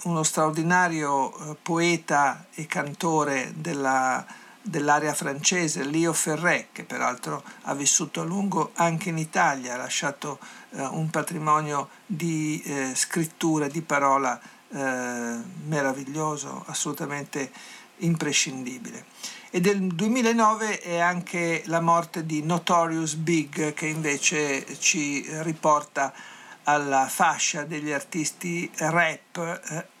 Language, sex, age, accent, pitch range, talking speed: Italian, male, 50-69, native, 150-175 Hz, 110 wpm